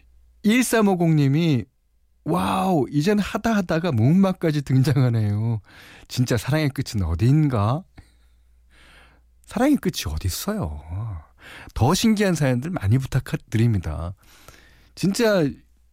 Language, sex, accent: Korean, male, native